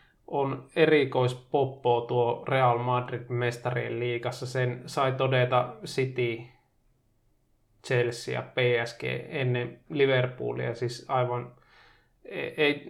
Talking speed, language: 90 wpm, Finnish